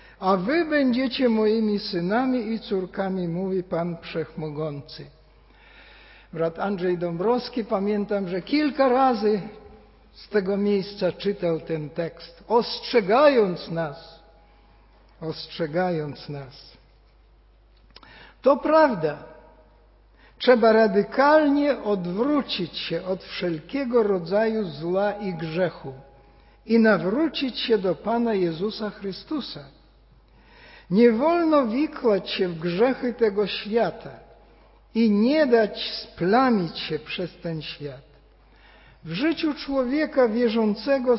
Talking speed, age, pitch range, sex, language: 95 wpm, 60-79, 175-245 Hz, male, Polish